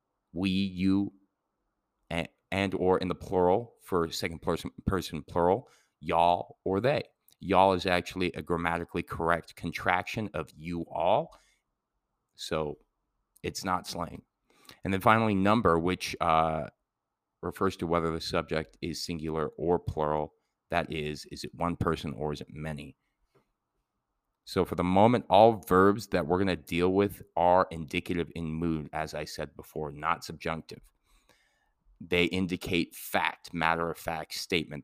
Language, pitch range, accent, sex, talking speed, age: English, 80-95 Hz, American, male, 145 wpm, 30-49